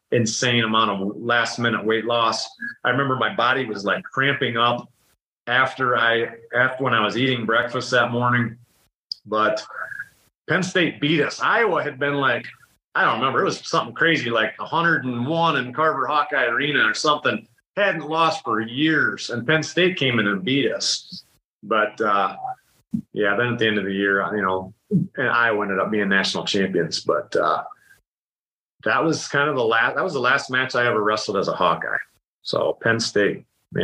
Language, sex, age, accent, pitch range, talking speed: English, male, 40-59, American, 110-145 Hz, 180 wpm